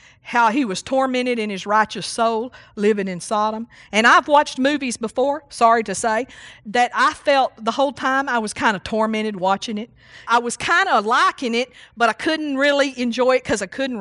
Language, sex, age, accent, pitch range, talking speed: English, female, 50-69, American, 185-260 Hz, 200 wpm